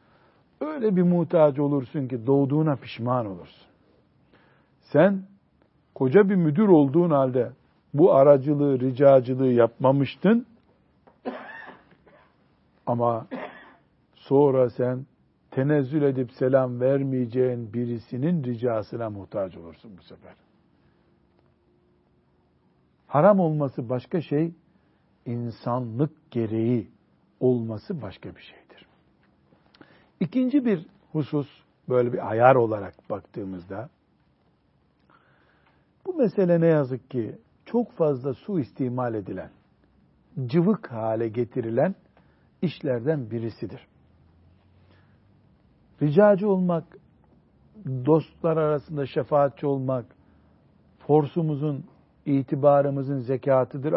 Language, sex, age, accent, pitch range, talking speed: Turkish, male, 60-79, native, 120-155 Hz, 80 wpm